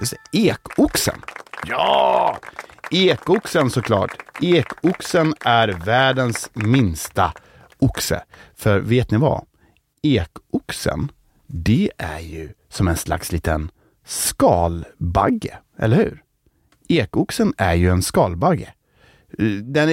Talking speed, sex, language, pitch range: 90 wpm, male, Swedish, 95-140 Hz